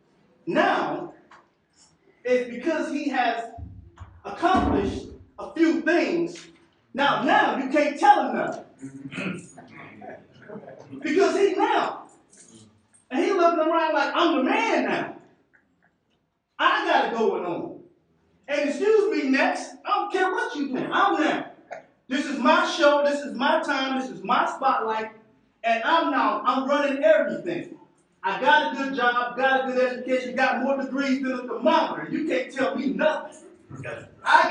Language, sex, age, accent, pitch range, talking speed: English, male, 30-49, American, 260-315 Hz, 145 wpm